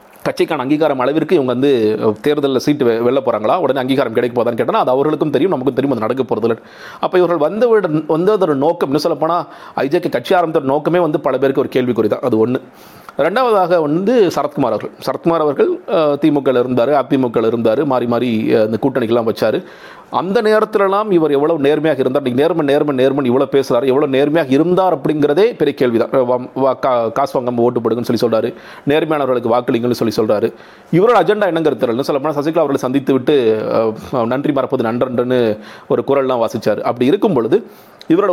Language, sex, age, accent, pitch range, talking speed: Tamil, male, 40-59, native, 125-160 Hz, 130 wpm